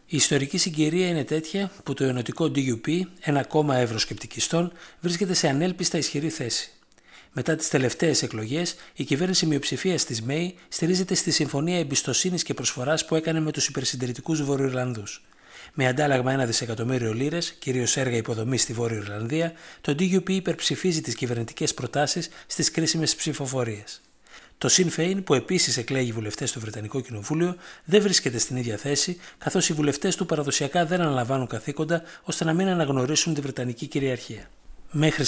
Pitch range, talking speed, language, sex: 125-165 Hz, 150 wpm, Greek, male